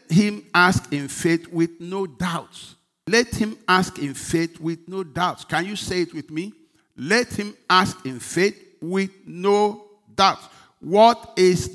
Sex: male